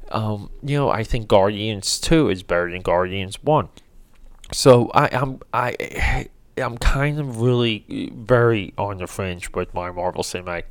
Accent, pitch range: American, 95-125 Hz